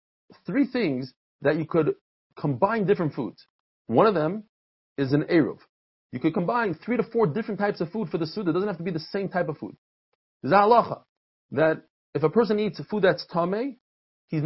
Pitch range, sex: 140-210 Hz, male